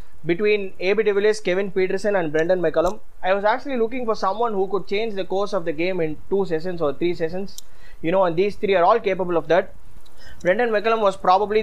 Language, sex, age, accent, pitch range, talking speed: English, male, 20-39, Indian, 160-205 Hz, 215 wpm